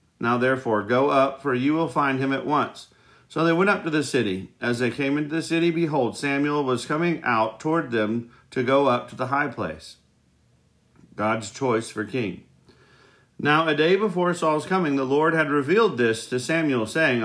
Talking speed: 195 wpm